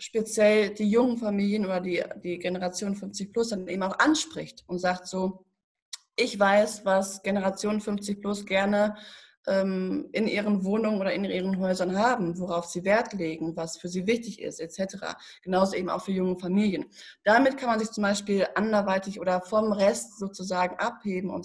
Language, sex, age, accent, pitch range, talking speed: German, female, 20-39, German, 180-215 Hz, 175 wpm